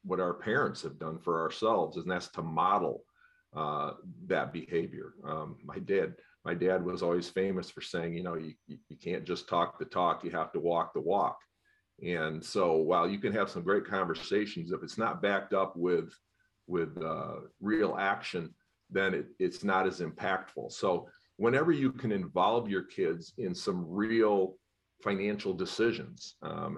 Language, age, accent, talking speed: English, 40-59, American, 175 wpm